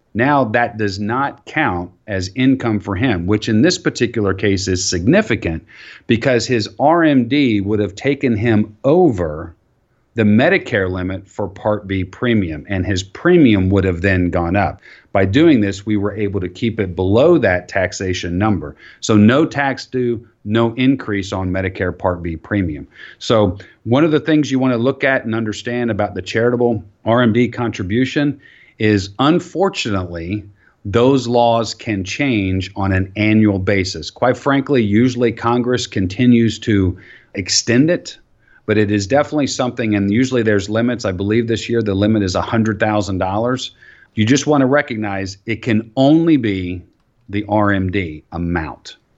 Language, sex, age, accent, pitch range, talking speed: English, male, 40-59, American, 95-120 Hz, 155 wpm